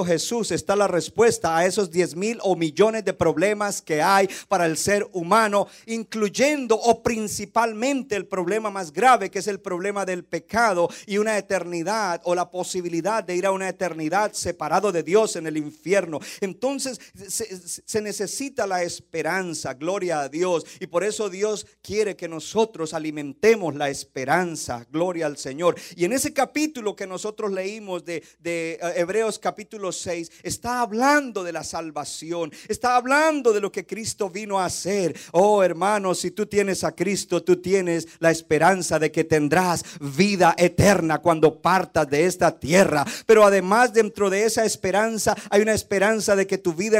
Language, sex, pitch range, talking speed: Spanish, male, 175-215 Hz, 165 wpm